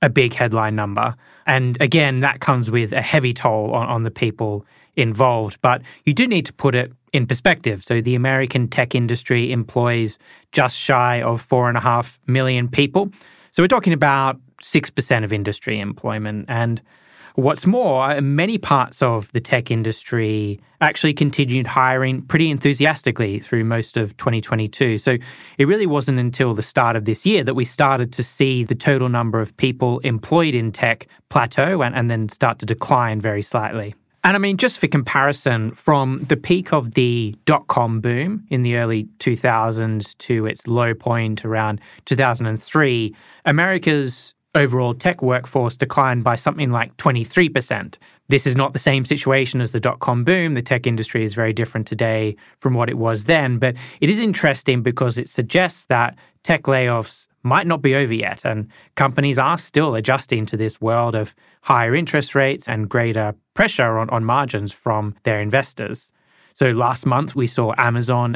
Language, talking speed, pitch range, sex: English, 170 wpm, 115-140 Hz, male